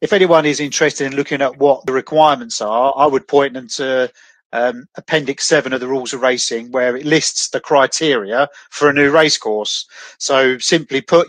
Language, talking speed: English, 195 wpm